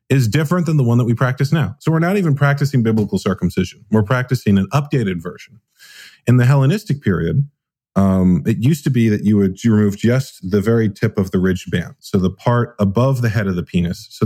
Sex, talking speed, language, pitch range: male, 220 wpm, English, 95-125 Hz